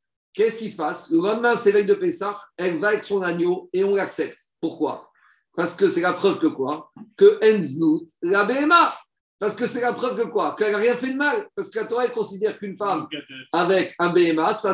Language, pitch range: French, 190-275 Hz